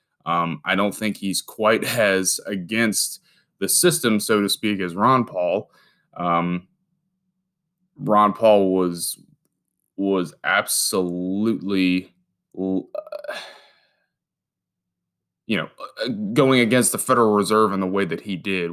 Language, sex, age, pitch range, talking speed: English, male, 20-39, 95-130 Hz, 115 wpm